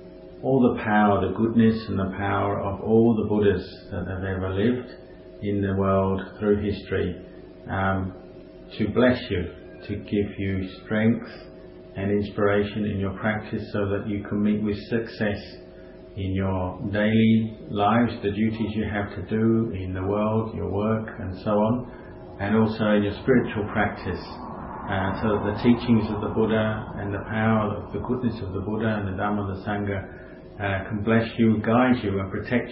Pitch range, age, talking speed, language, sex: 95-110 Hz, 40-59, 175 wpm, English, male